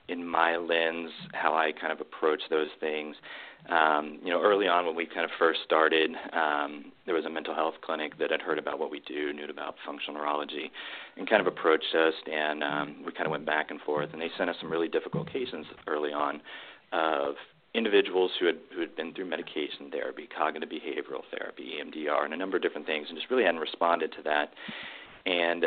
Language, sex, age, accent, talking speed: English, male, 40-59, American, 215 wpm